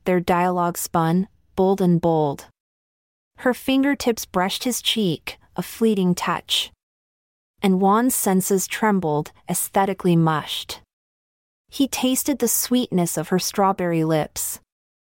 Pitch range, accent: 170-220 Hz, American